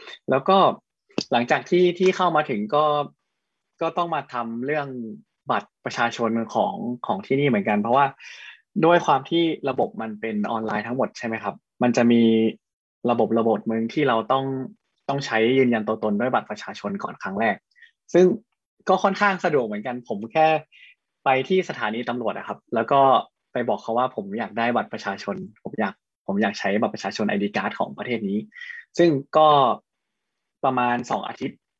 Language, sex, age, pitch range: Thai, male, 20-39, 115-170 Hz